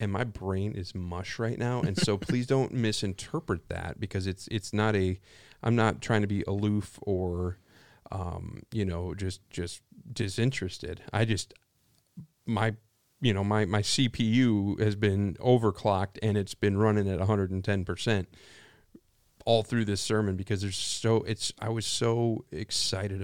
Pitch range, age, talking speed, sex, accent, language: 95-115 Hz, 40-59, 155 wpm, male, American, English